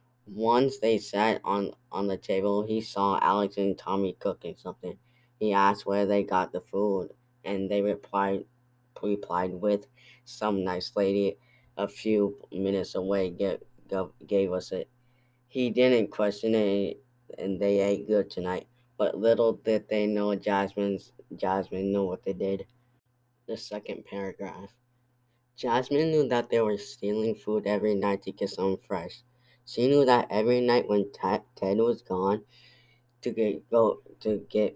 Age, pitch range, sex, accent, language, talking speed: 10-29, 100-120 Hz, female, American, English, 145 wpm